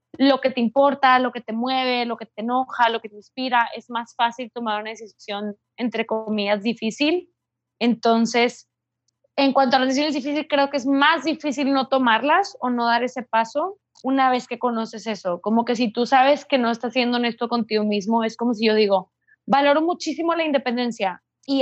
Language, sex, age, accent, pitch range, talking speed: Spanish, female, 20-39, Mexican, 225-265 Hz, 195 wpm